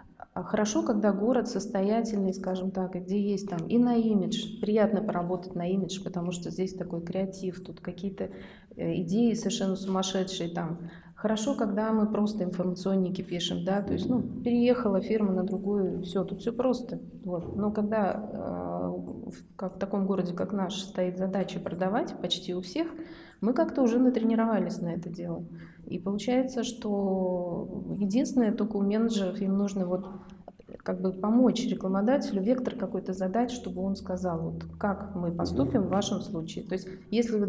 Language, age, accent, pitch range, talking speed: Russian, 30-49, native, 185-220 Hz, 155 wpm